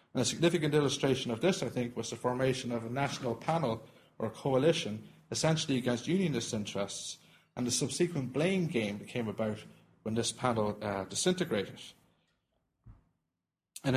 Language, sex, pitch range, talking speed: English, male, 115-145 Hz, 155 wpm